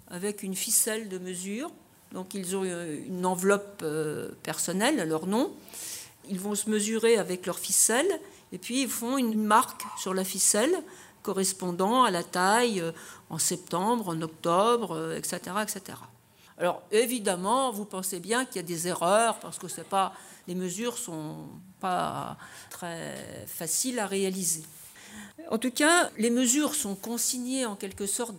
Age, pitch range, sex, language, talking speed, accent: 50-69, 185-240 Hz, female, French, 150 wpm, French